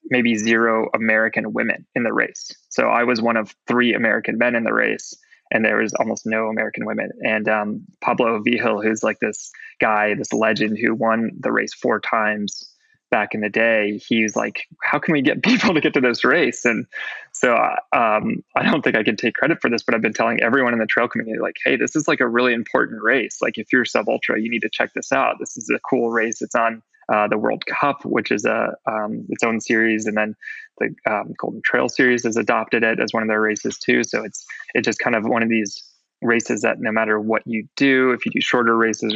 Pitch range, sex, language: 110-120 Hz, male, English